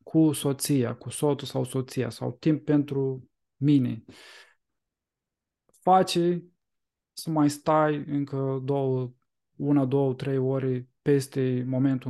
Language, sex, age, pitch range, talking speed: Romanian, male, 20-39, 130-155 Hz, 110 wpm